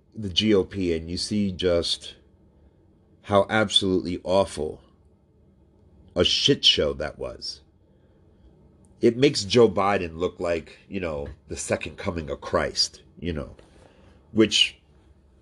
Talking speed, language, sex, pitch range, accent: 115 wpm, English, male, 80-105 Hz, American